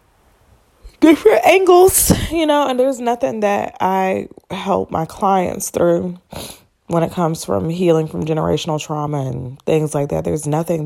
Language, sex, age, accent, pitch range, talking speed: English, female, 20-39, American, 125-175 Hz, 150 wpm